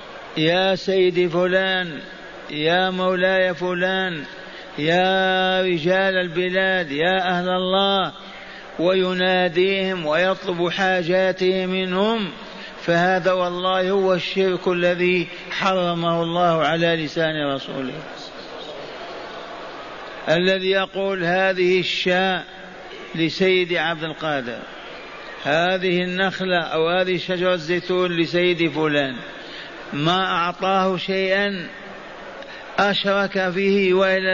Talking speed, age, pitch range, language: 80 wpm, 50-69, 170-185 Hz, Arabic